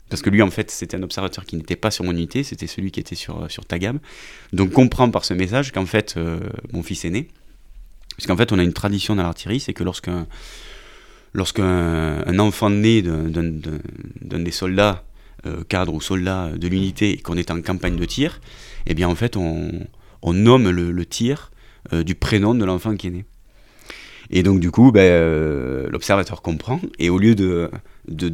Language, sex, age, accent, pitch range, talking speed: French, male, 30-49, French, 85-110 Hz, 210 wpm